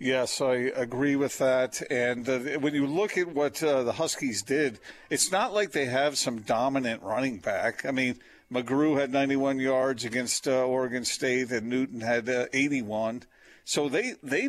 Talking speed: 180 wpm